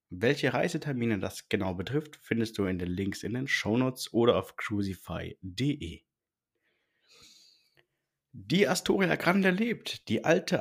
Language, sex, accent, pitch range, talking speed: German, male, German, 100-145 Hz, 125 wpm